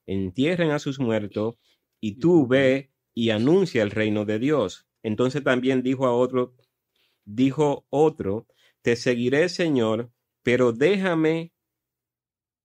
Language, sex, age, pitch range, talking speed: Spanish, male, 30-49, 110-140 Hz, 120 wpm